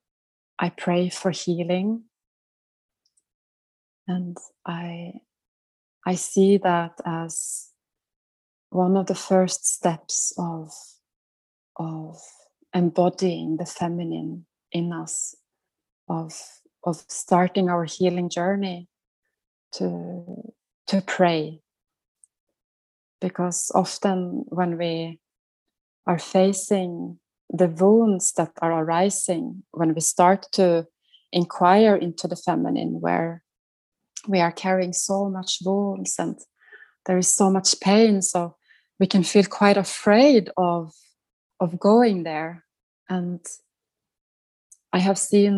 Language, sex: English, female